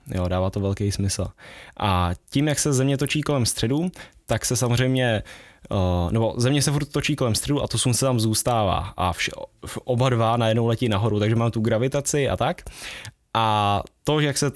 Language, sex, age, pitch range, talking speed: Czech, male, 10-29, 105-125 Hz, 190 wpm